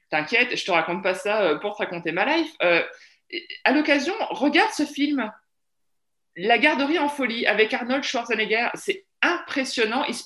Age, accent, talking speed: 20-39, French, 175 wpm